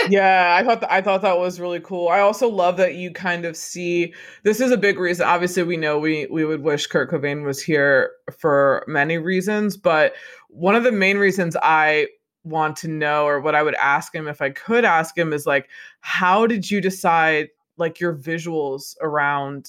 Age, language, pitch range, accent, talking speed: 20-39, English, 155-180 Hz, American, 205 wpm